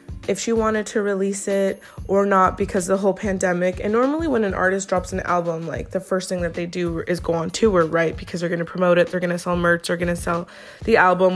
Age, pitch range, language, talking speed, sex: 20-39, 175-200 Hz, English, 245 wpm, female